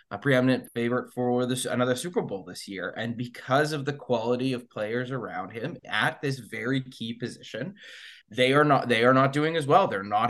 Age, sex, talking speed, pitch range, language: 20-39, male, 205 wpm, 115-150 Hz, English